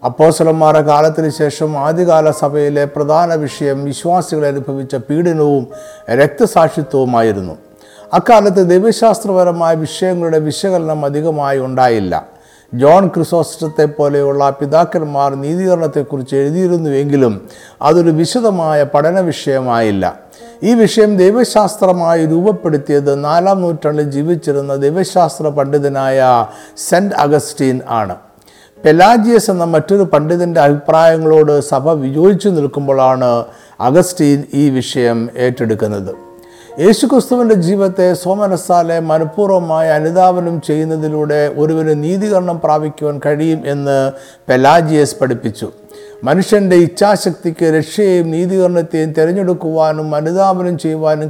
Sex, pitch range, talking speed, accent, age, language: male, 140-175 Hz, 80 wpm, native, 50-69, Malayalam